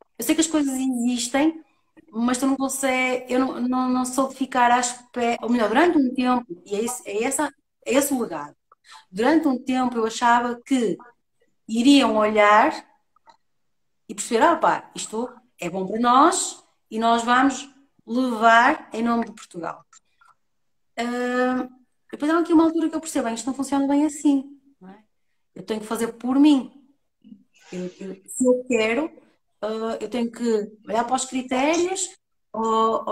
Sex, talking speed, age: female, 170 wpm, 30-49